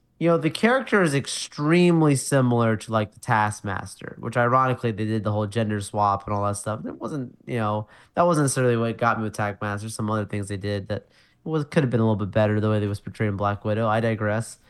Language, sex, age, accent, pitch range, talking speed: English, male, 20-39, American, 110-135 Hz, 235 wpm